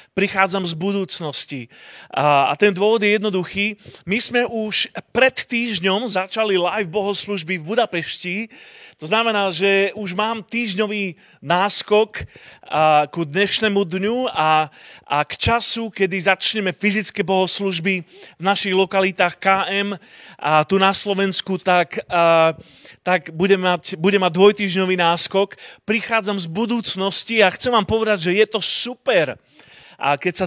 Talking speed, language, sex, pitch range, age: 130 wpm, Slovak, male, 175-210 Hz, 30-49